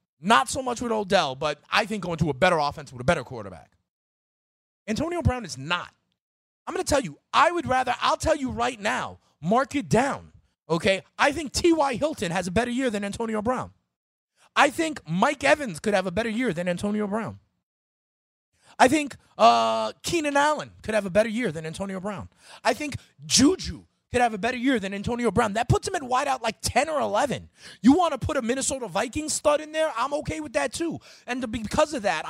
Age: 30-49